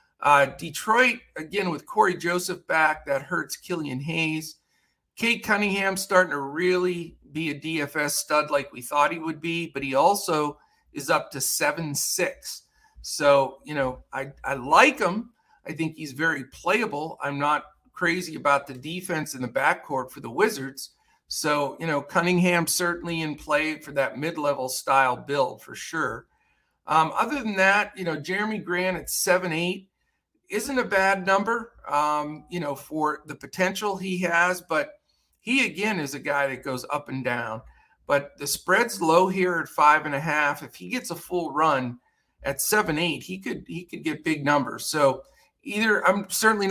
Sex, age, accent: male, 50-69, American